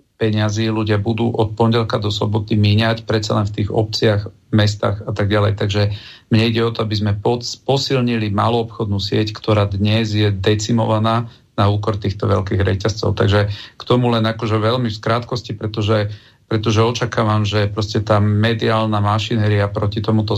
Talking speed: 160 wpm